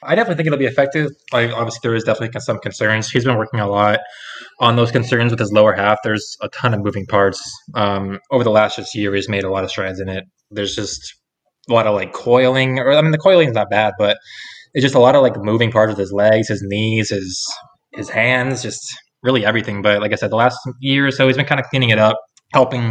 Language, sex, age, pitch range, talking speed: English, male, 20-39, 100-120 Hz, 255 wpm